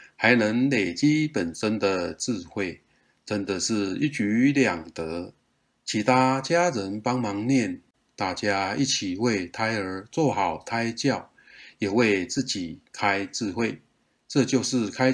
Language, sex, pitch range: Chinese, male, 100-135 Hz